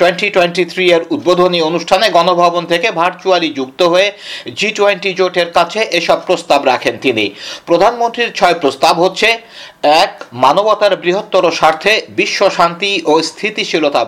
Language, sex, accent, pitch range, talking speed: Bengali, male, native, 180-210 Hz, 55 wpm